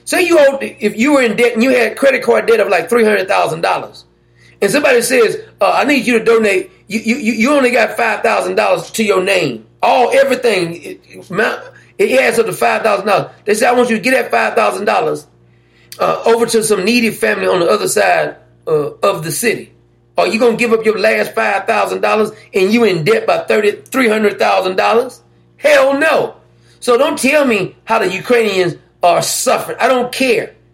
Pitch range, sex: 165-250 Hz, male